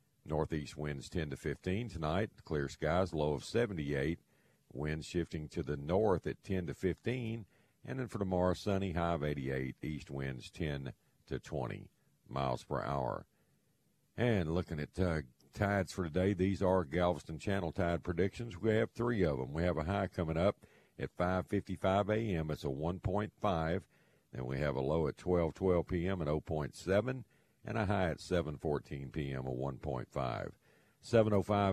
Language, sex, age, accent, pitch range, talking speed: English, male, 50-69, American, 70-100 Hz, 155 wpm